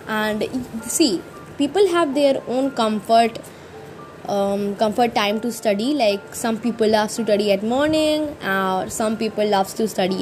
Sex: female